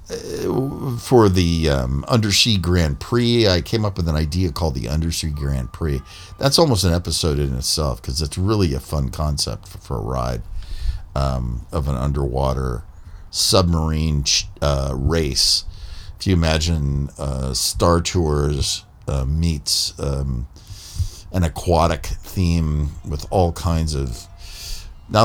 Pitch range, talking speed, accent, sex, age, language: 70-90 Hz, 140 wpm, American, male, 50-69, English